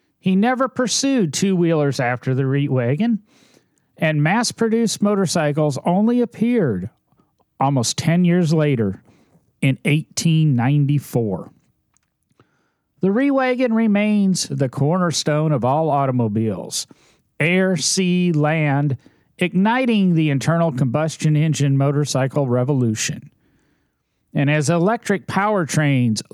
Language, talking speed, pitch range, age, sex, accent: English, 95 wpm, 125-170 Hz, 40-59, male, American